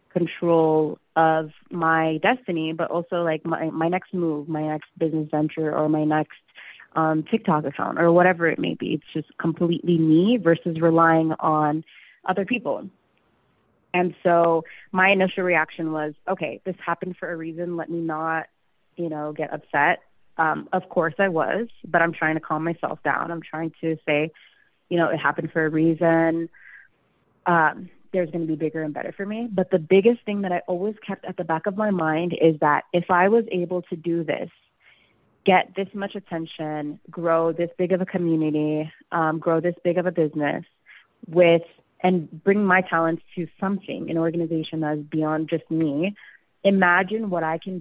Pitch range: 160-180 Hz